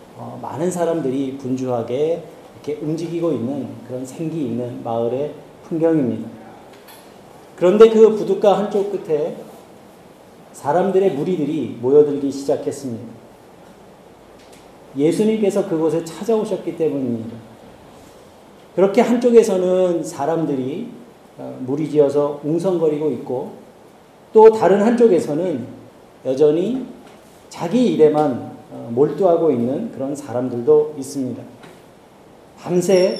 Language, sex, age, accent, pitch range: Korean, male, 40-59, native, 140-190 Hz